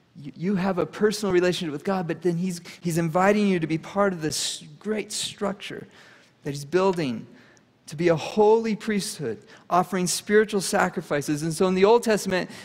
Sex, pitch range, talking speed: male, 150-195 Hz, 175 wpm